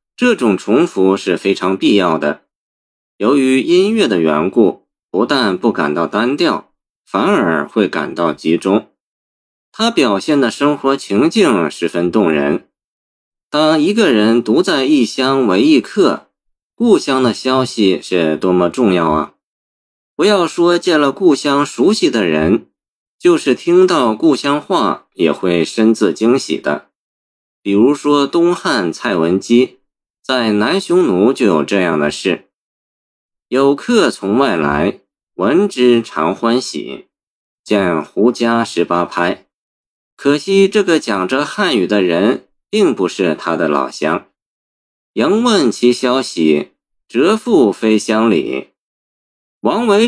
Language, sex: Chinese, male